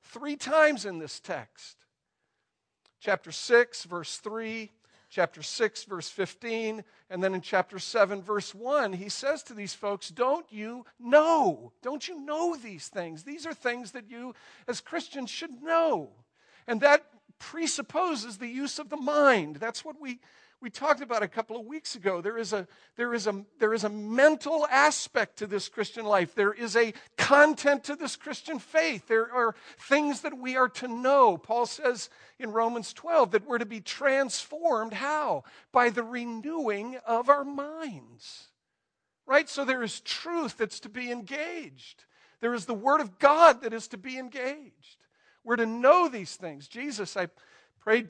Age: 50-69